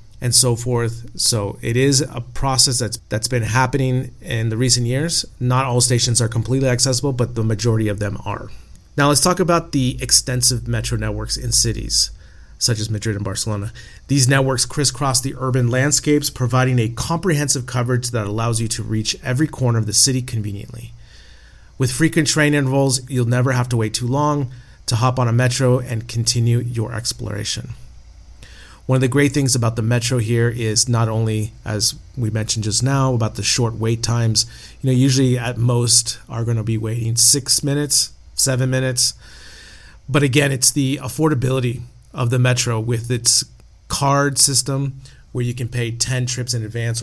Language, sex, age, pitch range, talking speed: English, male, 30-49, 110-130 Hz, 180 wpm